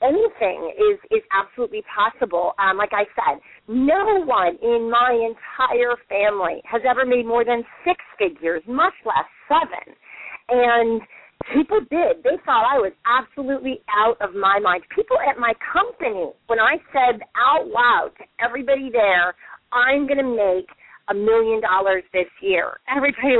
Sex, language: female, English